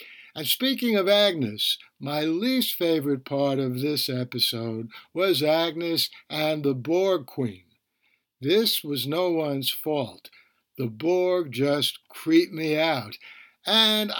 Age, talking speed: 60-79, 125 wpm